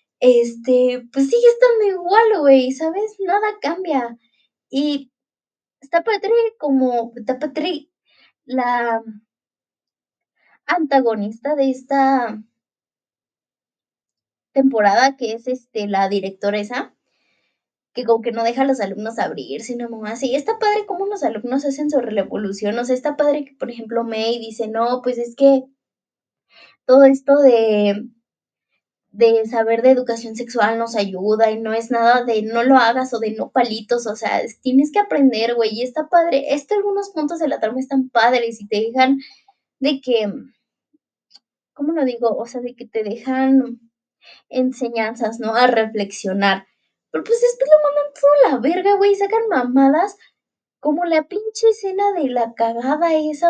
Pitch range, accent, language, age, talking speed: 230-315 Hz, Mexican, Spanish, 20-39, 155 wpm